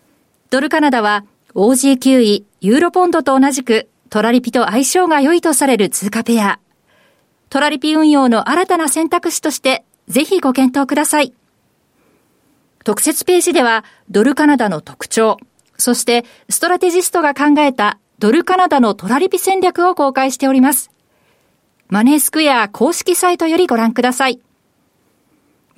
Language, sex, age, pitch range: Japanese, female, 40-59, 235-310 Hz